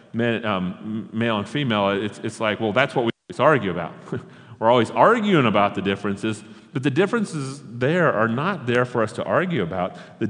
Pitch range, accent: 105-140 Hz, American